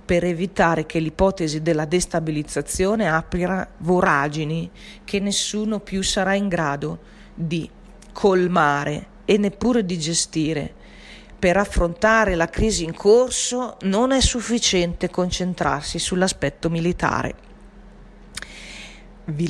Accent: native